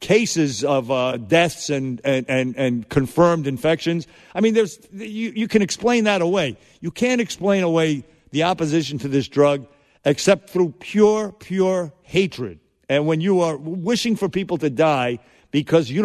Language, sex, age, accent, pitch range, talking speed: English, male, 50-69, American, 140-190 Hz, 165 wpm